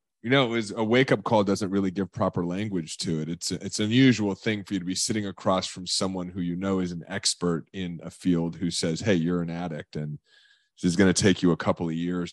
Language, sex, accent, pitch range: English, male, American, 90-105 Hz